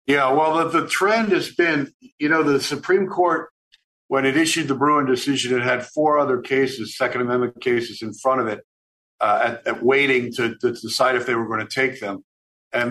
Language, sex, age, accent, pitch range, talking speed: English, male, 50-69, American, 115-145 Hz, 210 wpm